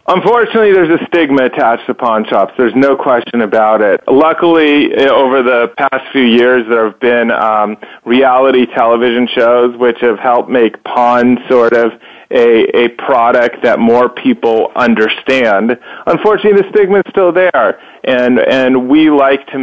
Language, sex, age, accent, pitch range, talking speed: English, male, 30-49, American, 115-140 Hz, 155 wpm